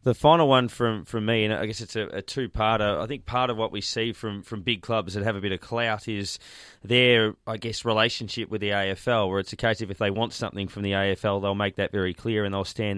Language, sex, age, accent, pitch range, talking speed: English, male, 20-39, Australian, 105-120 Hz, 270 wpm